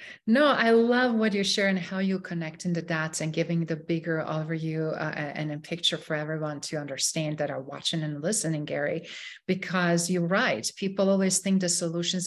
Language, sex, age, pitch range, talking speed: English, female, 40-59, 175-200 Hz, 185 wpm